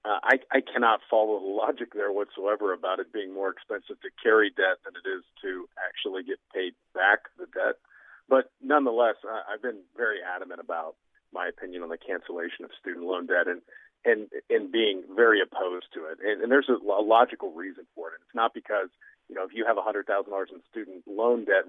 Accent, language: American, English